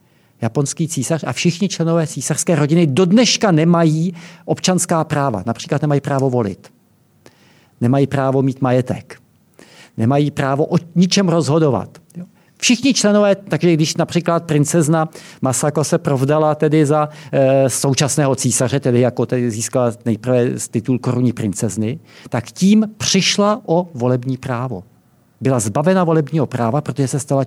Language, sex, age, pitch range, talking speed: Czech, male, 50-69, 125-165 Hz, 130 wpm